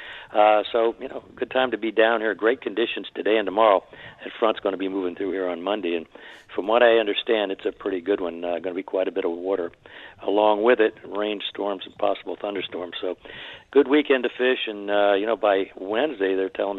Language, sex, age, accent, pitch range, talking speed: English, male, 60-79, American, 95-110 Hz, 230 wpm